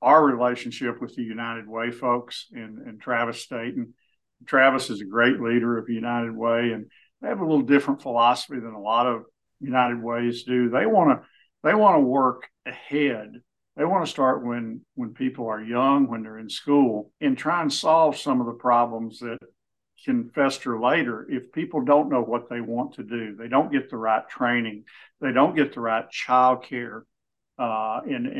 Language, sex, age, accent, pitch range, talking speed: English, male, 50-69, American, 120-145 Hz, 195 wpm